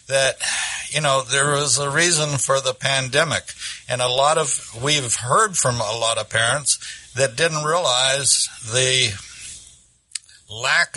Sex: male